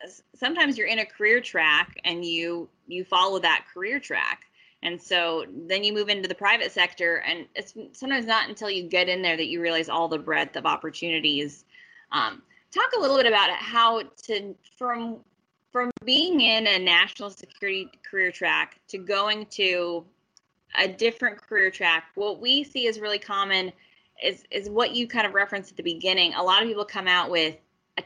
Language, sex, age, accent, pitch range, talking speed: English, female, 20-39, American, 175-225 Hz, 190 wpm